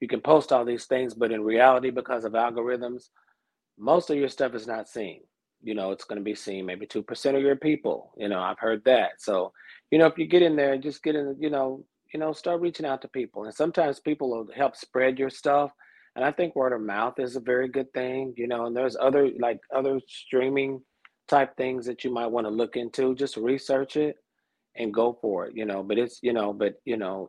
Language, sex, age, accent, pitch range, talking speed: English, male, 40-59, American, 105-135 Hz, 240 wpm